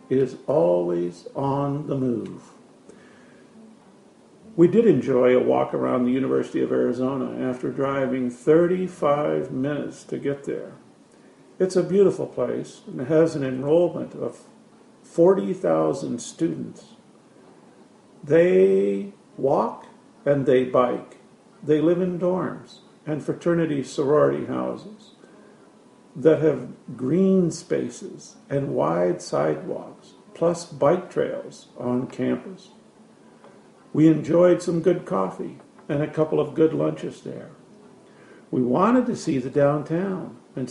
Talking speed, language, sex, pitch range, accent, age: 115 wpm, English, male, 130-180 Hz, American, 50-69